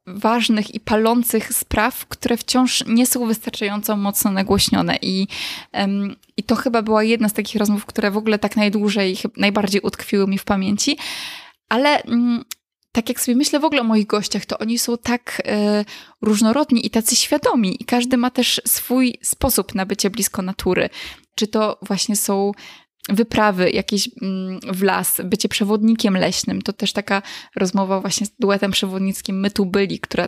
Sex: female